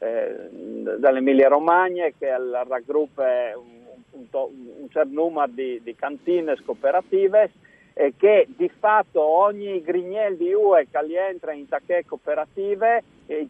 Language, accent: Italian, native